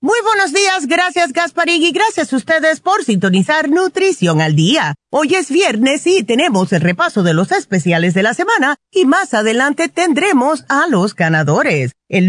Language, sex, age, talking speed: Spanish, female, 40-59, 170 wpm